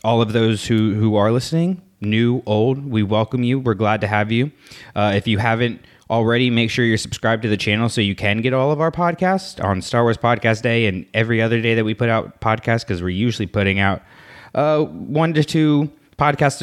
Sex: male